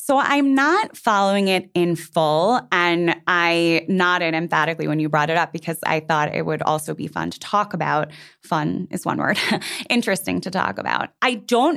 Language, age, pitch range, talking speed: English, 20-39, 160-210 Hz, 190 wpm